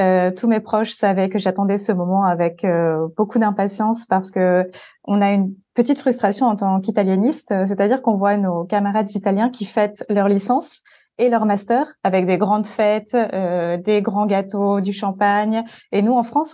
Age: 20-39